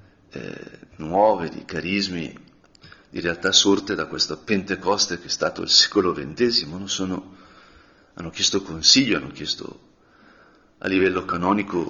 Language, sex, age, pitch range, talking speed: Italian, male, 40-59, 90-140 Hz, 125 wpm